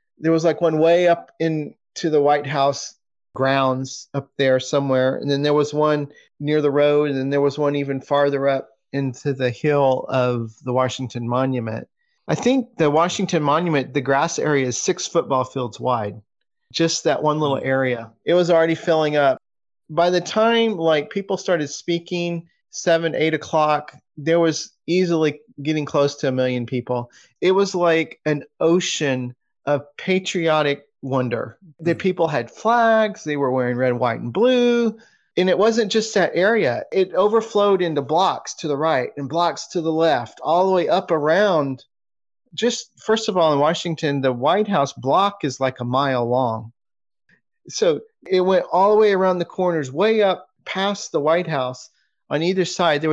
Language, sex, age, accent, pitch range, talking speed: English, male, 30-49, American, 135-180 Hz, 175 wpm